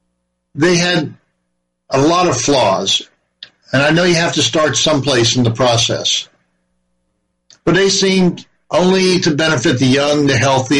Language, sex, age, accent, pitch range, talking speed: English, male, 50-69, American, 110-155 Hz, 150 wpm